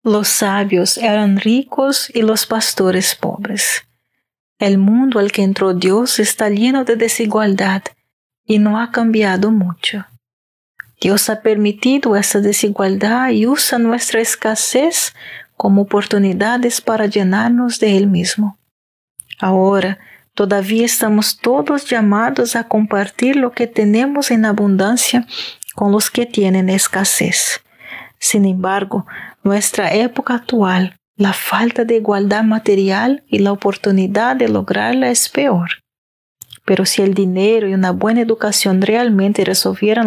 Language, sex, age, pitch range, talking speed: Spanish, female, 40-59, 195-230 Hz, 125 wpm